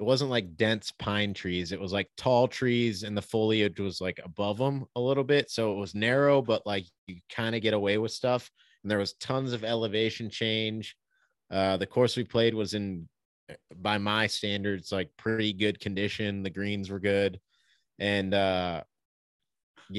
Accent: American